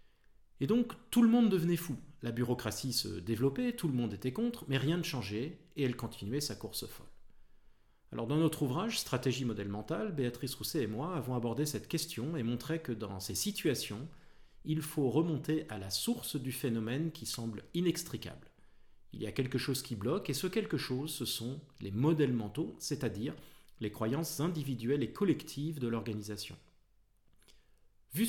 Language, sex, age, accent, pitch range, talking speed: French, male, 40-59, French, 115-160 Hz, 180 wpm